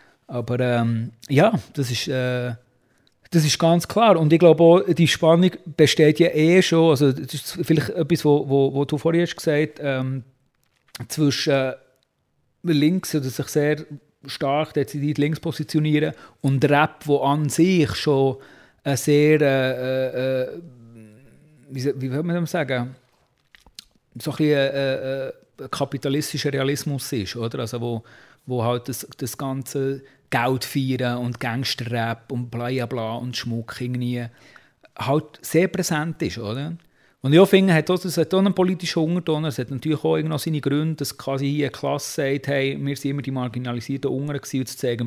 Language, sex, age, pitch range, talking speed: German, male, 40-59, 125-155 Hz, 155 wpm